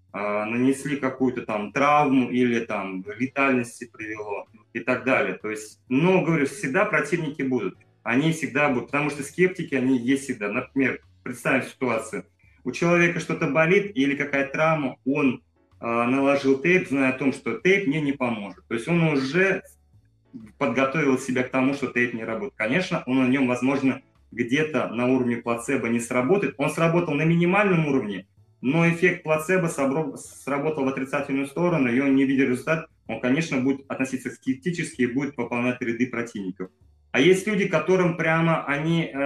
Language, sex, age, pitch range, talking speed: Russian, male, 30-49, 115-145 Hz, 160 wpm